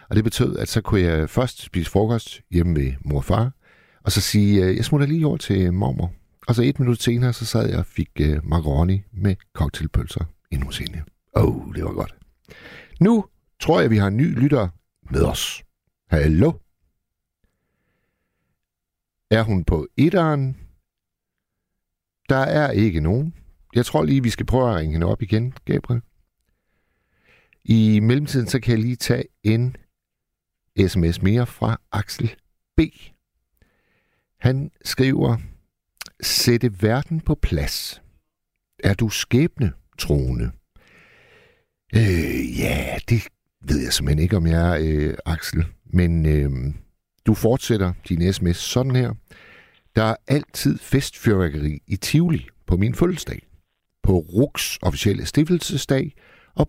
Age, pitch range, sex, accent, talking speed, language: 60-79, 85-125 Hz, male, native, 140 wpm, Danish